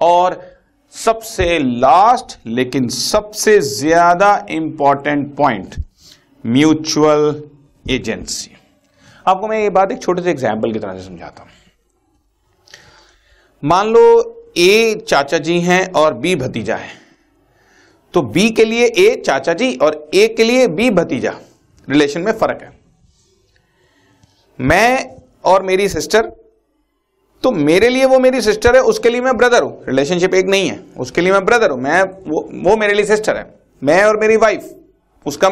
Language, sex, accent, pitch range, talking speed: Hindi, male, native, 175-255 Hz, 145 wpm